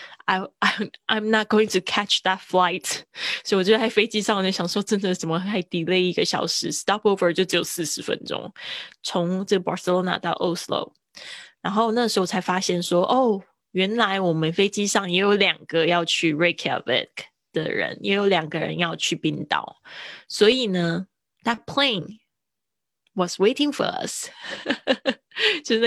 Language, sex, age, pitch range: Chinese, female, 10-29, 175-210 Hz